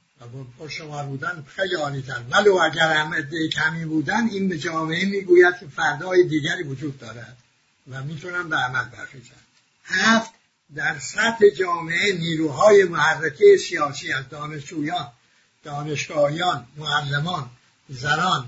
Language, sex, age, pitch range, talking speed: English, male, 60-79, 145-185 Hz, 115 wpm